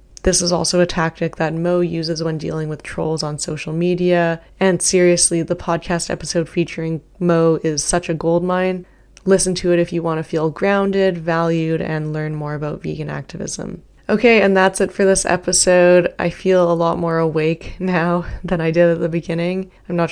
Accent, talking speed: American, 190 wpm